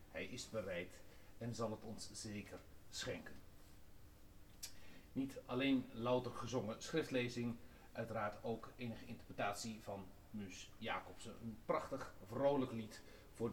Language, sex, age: Dutch, male, 40-59